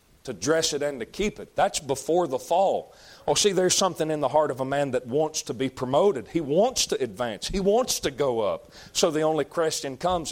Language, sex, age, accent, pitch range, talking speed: English, male, 40-59, American, 140-165 Hz, 235 wpm